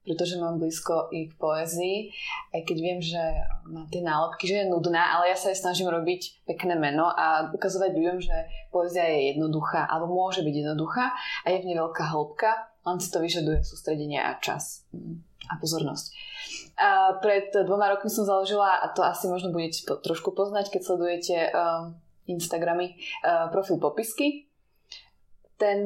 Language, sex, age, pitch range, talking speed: Slovak, female, 20-39, 165-195 Hz, 165 wpm